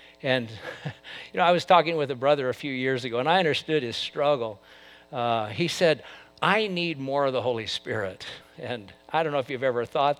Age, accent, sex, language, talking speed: 50-69, American, male, English, 210 wpm